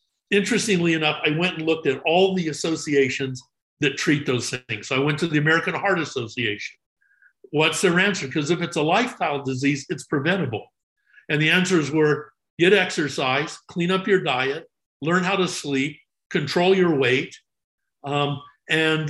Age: 50-69